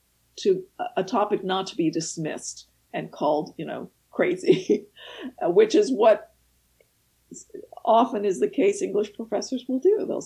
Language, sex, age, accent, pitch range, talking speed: English, female, 50-69, American, 205-330 Hz, 140 wpm